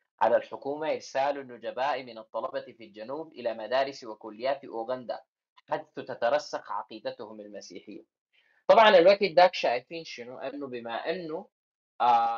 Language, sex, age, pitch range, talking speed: Arabic, male, 30-49, 115-155 Hz, 120 wpm